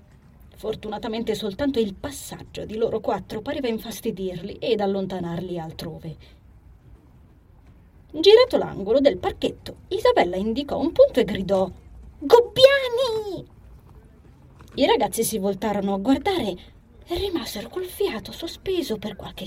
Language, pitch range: Italian, 180-275 Hz